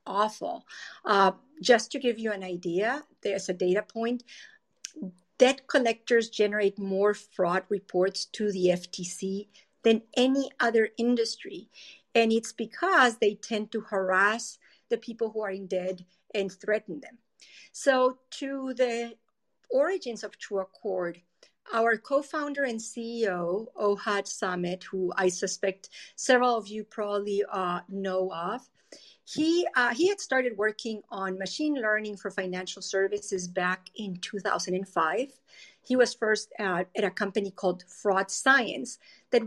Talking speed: 135 wpm